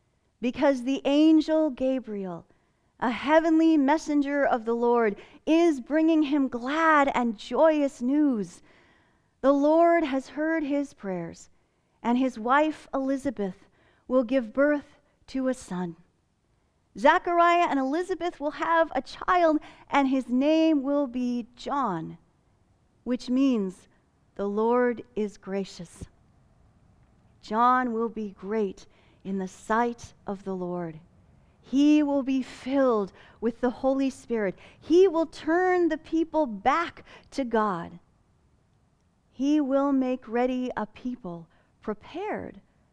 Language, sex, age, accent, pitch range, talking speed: English, female, 40-59, American, 220-310 Hz, 120 wpm